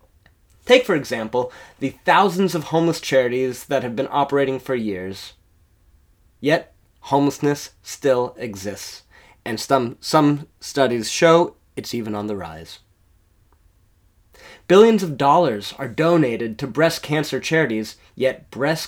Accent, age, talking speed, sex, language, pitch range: American, 20-39, 125 wpm, male, English, 105-150 Hz